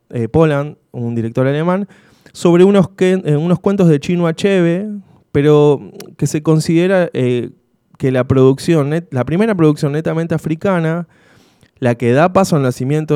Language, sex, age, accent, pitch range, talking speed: Spanish, male, 20-39, Argentinian, 125-160 Hz, 155 wpm